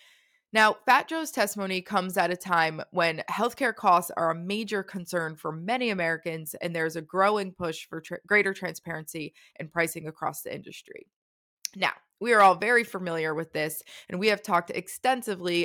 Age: 20-39